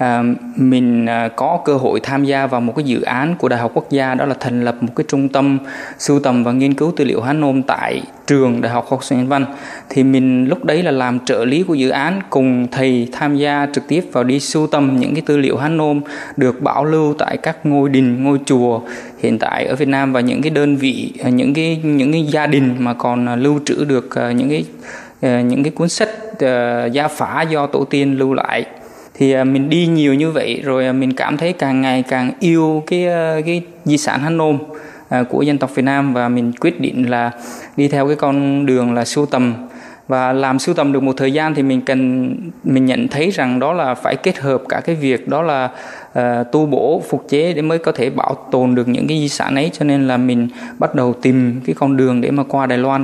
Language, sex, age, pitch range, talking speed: Vietnamese, male, 20-39, 125-145 Hz, 240 wpm